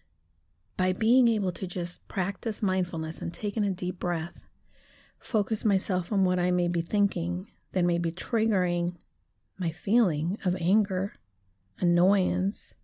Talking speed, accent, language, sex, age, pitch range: 135 wpm, American, English, female, 40-59, 170-230 Hz